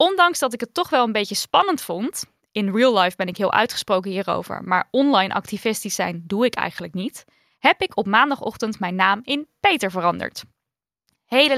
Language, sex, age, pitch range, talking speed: Dutch, female, 10-29, 195-265 Hz, 185 wpm